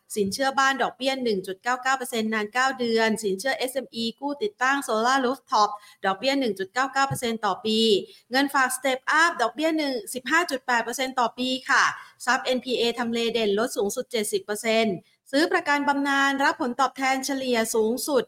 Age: 30-49